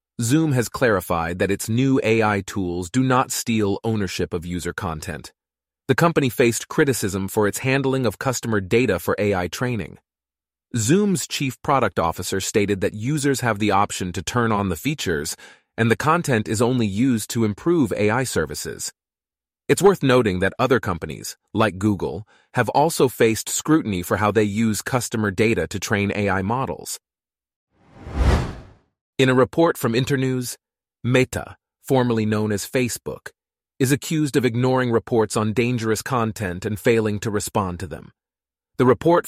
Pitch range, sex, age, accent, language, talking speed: 100-125 Hz, male, 30-49, American, English, 155 wpm